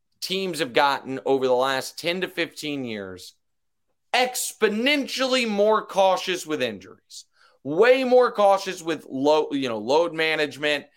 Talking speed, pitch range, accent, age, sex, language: 130 wpm, 135-190 Hz, American, 30-49, male, English